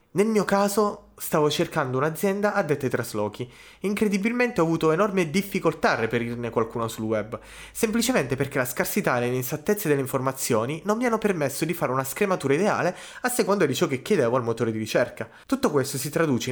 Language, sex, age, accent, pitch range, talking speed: Italian, male, 20-39, native, 120-190 Hz, 185 wpm